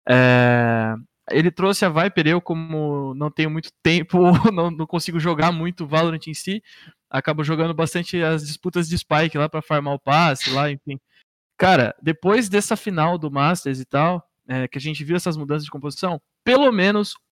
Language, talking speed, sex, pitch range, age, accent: Portuguese, 180 wpm, male, 145-190 Hz, 20-39, Brazilian